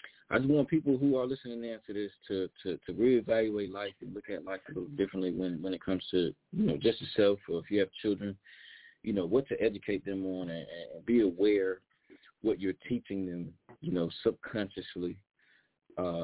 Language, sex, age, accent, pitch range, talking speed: English, male, 20-39, American, 95-125 Hz, 200 wpm